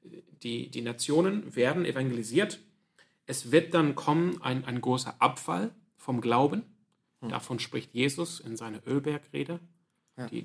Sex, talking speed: male, 125 wpm